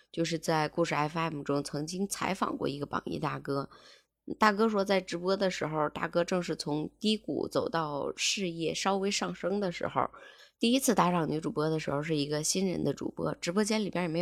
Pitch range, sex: 155-195 Hz, female